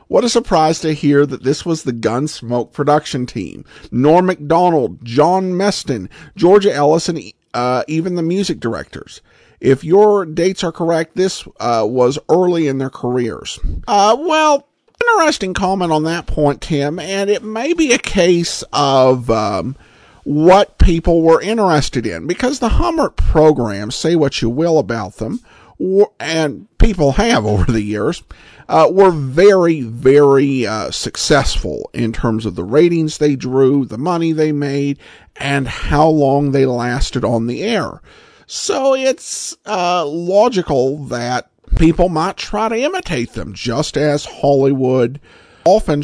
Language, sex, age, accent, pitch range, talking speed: English, male, 50-69, American, 135-180 Hz, 145 wpm